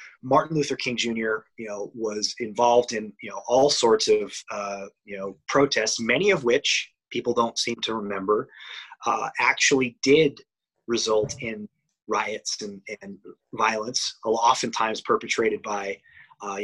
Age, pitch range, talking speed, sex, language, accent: 30-49, 110-140 Hz, 140 wpm, male, English, American